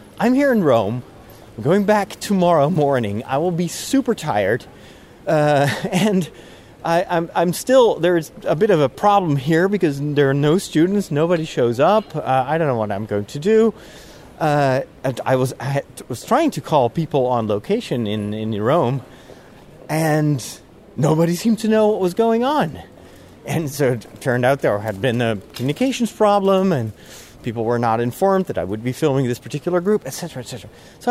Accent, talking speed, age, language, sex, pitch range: American, 180 wpm, 30-49, English, male, 130-215 Hz